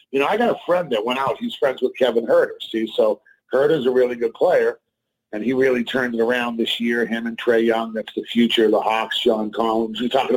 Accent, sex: American, male